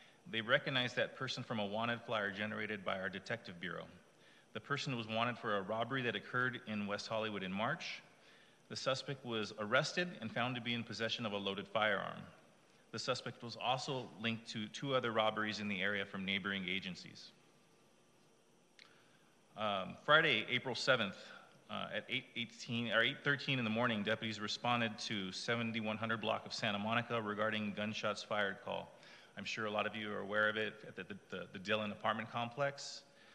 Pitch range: 105-125 Hz